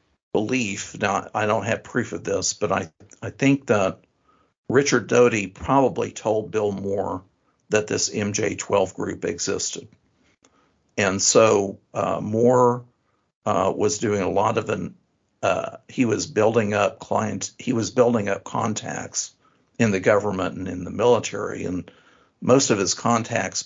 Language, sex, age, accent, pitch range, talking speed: English, male, 50-69, American, 100-125 Hz, 145 wpm